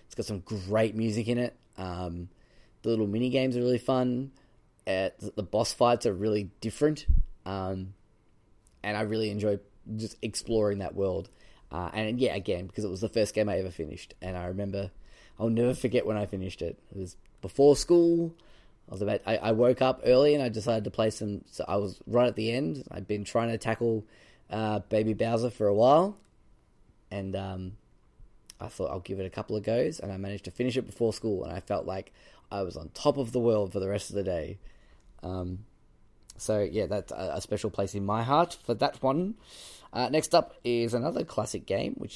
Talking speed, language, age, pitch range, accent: 210 wpm, English, 10-29, 95-120 Hz, Australian